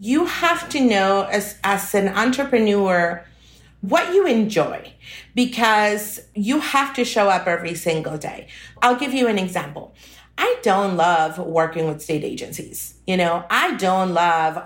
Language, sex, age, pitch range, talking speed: English, female, 40-59, 175-230 Hz, 150 wpm